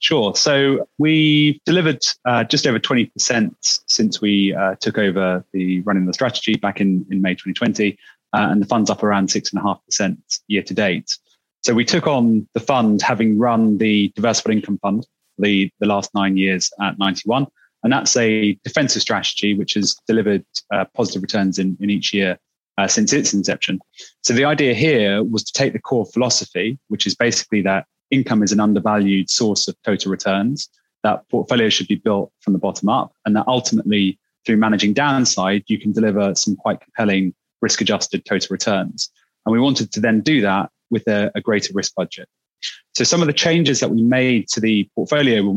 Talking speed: 185 wpm